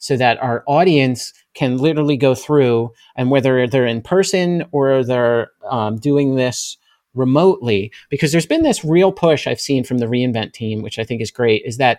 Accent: American